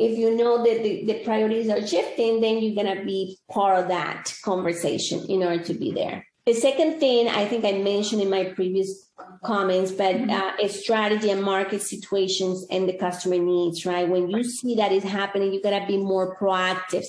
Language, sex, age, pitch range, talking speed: English, female, 30-49, 190-230 Hz, 200 wpm